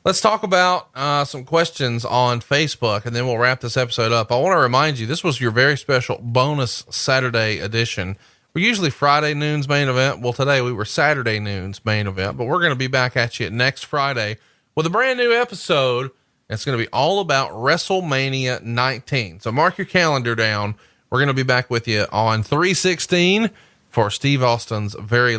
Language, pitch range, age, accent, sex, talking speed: English, 110-140 Hz, 30-49, American, male, 190 wpm